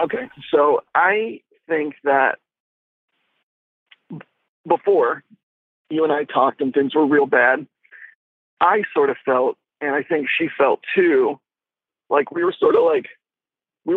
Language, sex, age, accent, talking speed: English, male, 40-59, American, 140 wpm